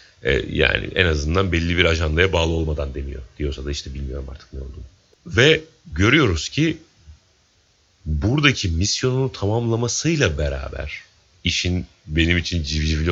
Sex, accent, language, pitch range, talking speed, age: male, native, Turkish, 75-105 Hz, 125 wpm, 40-59